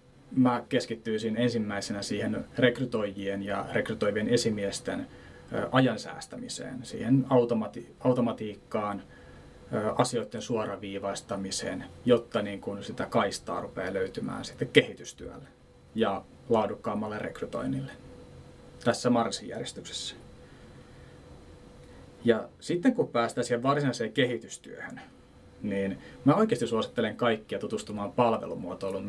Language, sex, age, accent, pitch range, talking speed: Finnish, male, 30-49, native, 100-125 Hz, 85 wpm